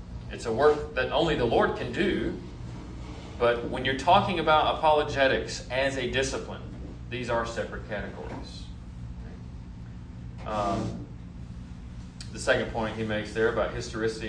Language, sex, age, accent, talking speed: English, male, 40-59, American, 130 wpm